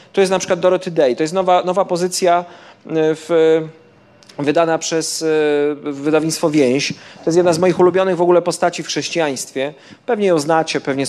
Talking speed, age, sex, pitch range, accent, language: 160 wpm, 40-59, male, 150-180 Hz, native, Polish